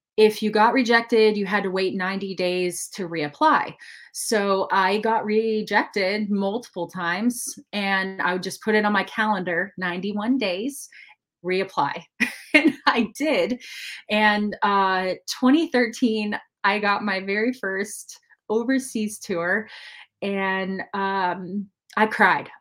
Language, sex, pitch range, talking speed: English, female, 185-220 Hz, 125 wpm